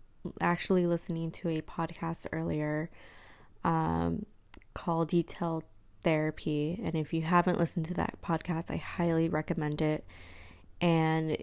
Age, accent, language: 20-39, American, English